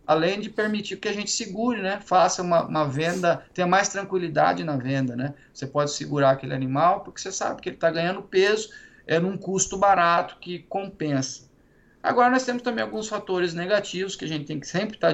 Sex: male